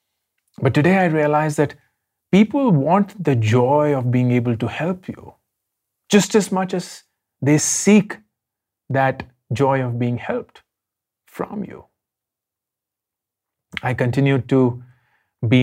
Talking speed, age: 125 wpm, 30-49